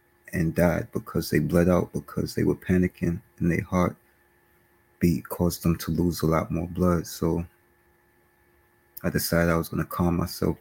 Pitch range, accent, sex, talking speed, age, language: 70-90 Hz, American, male, 170 wpm, 30-49, English